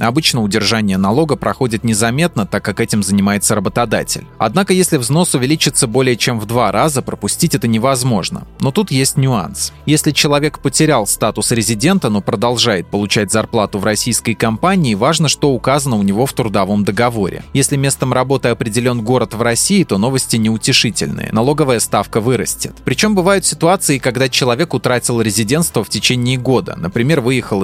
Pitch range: 110-145 Hz